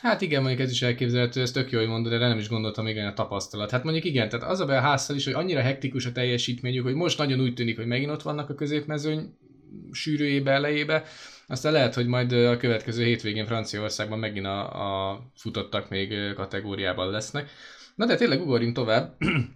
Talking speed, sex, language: 195 wpm, male, Hungarian